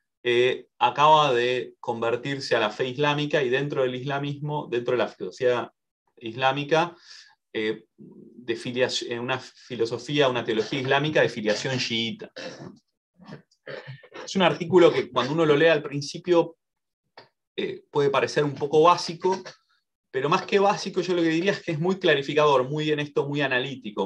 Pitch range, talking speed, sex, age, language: 130-180 Hz, 155 wpm, male, 30-49, English